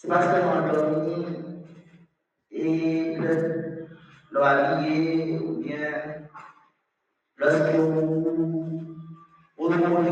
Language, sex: English, male